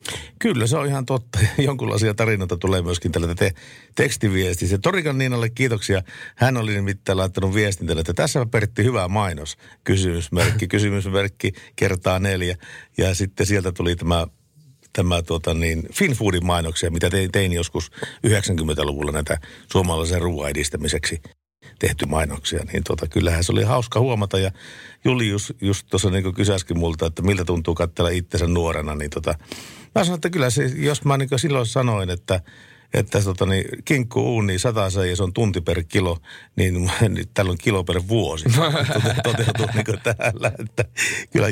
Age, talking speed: 50-69, 150 wpm